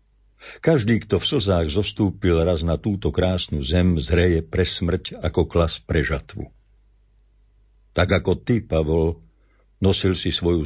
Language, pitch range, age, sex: Slovak, 85-105 Hz, 60-79, male